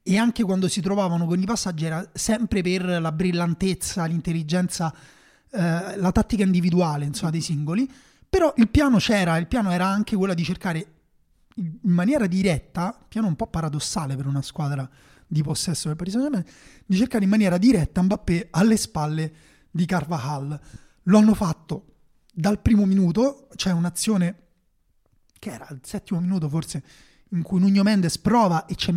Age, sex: 30-49, male